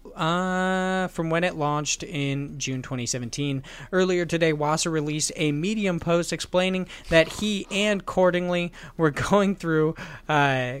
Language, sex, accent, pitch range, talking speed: English, male, American, 150-185 Hz, 135 wpm